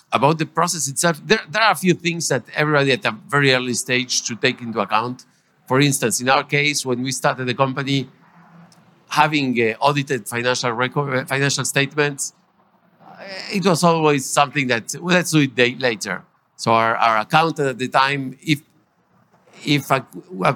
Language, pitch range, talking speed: English, 115-140 Hz, 170 wpm